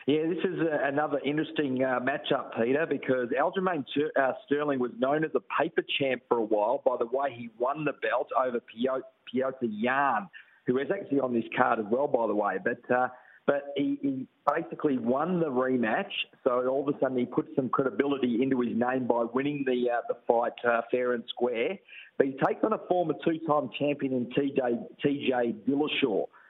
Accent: Australian